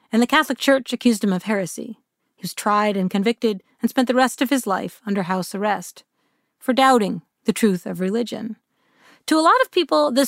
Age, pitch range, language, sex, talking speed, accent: 40-59, 215-285 Hz, English, female, 205 wpm, American